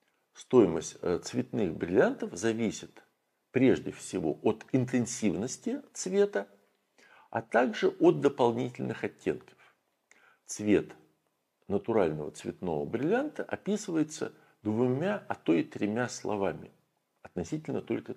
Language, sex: Russian, male